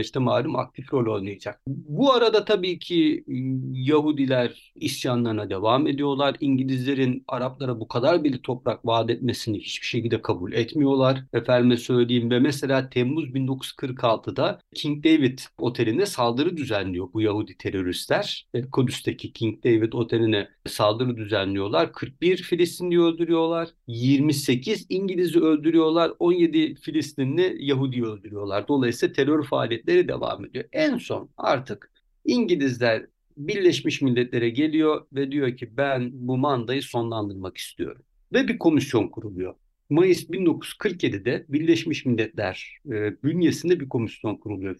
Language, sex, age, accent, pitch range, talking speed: Turkish, male, 50-69, native, 120-160 Hz, 115 wpm